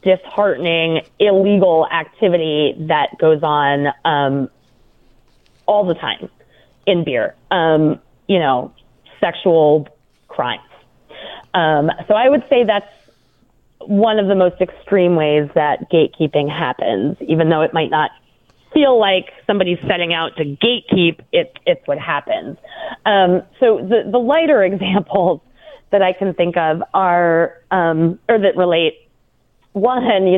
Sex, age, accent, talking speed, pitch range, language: female, 30-49, American, 130 wpm, 165-205 Hz, English